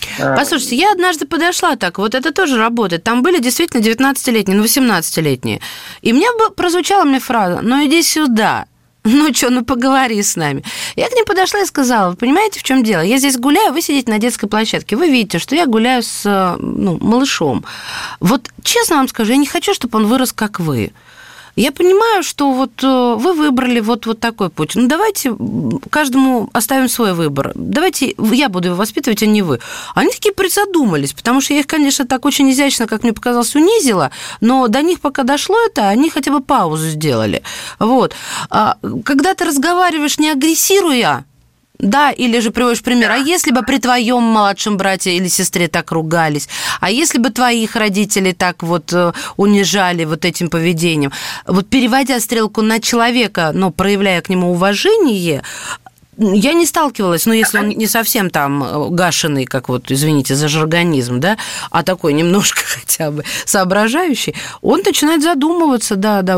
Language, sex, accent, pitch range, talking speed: Russian, female, native, 195-290 Hz, 170 wpm